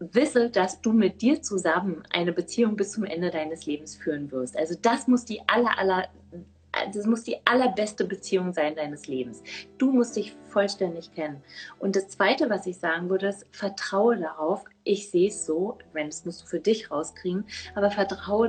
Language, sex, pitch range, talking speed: German, female, 170-220 Hz, 180 wpm